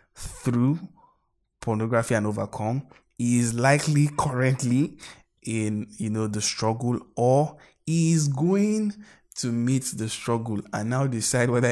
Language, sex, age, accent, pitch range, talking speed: English, male, 20-39, Nigerian, 115-145 Hz, 120 wpm